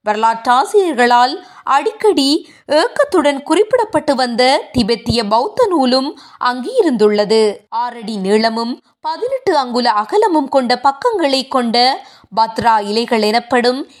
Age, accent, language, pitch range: 20-39, native, Tamil, 230-310 Hz